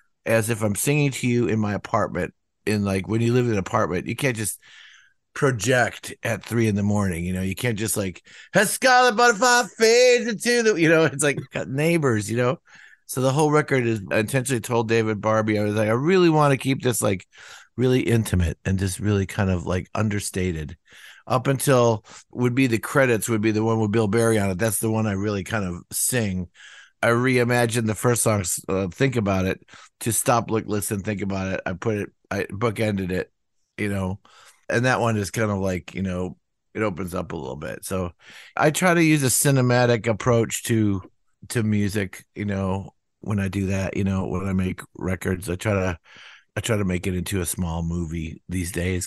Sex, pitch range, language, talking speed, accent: male, 95-120 Hz, English, 210 wpm, American